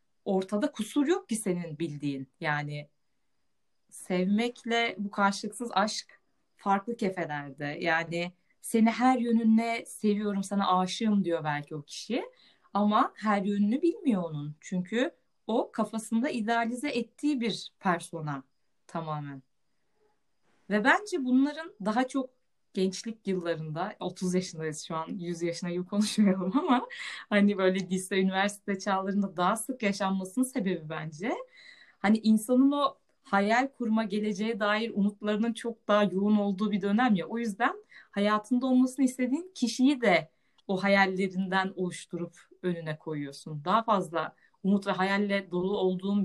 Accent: native